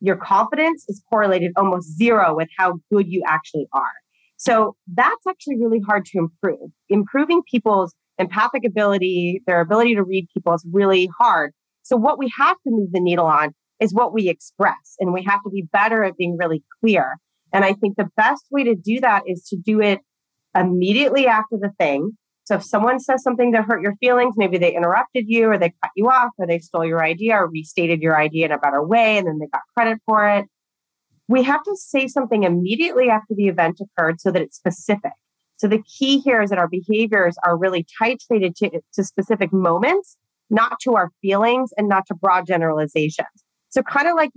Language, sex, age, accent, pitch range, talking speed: English, female, 30-49, American, 175-230 Hz, 205 wpm